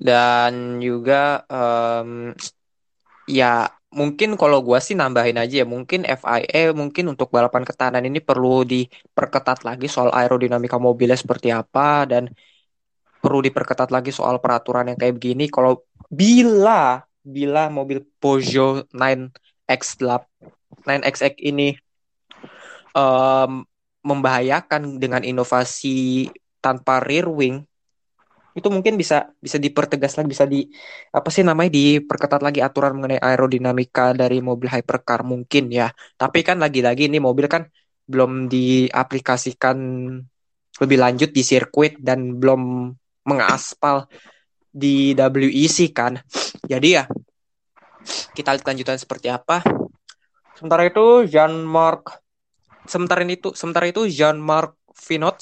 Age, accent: 20-39, native